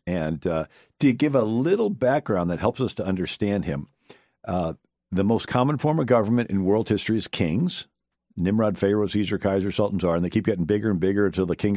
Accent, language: American, English